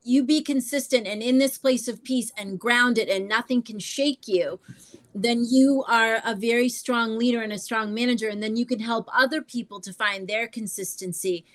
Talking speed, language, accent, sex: 200 wpm, English, American, female